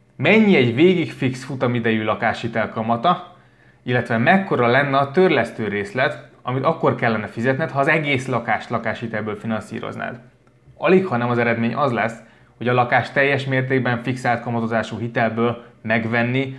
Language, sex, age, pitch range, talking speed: Hungarian, male, 20-39, 115-135 Hz, 140 wpm